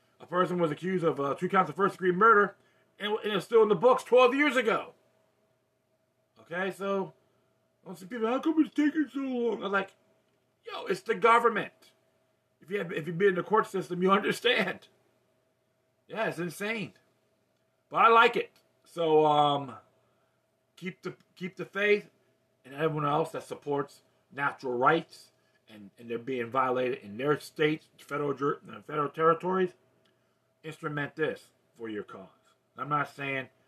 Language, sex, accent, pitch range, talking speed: English, male, American, 140-210 Hz, 160 wpm